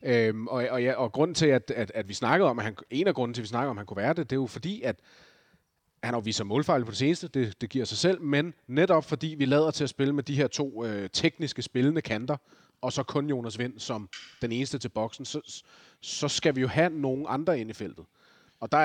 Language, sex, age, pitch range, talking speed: Danish, male, 30-49, 115-145 Hz, 220 wpm